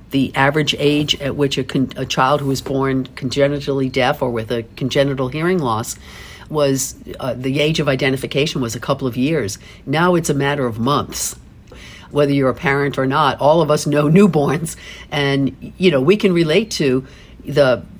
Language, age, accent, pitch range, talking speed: English, 50-69, American, 125-150 Hz, 185 wpm